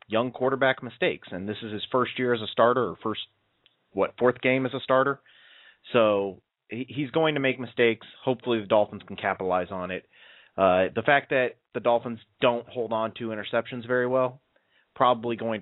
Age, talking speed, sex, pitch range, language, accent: 30-49, 185 wpm, male, 100-125 Hz, English, American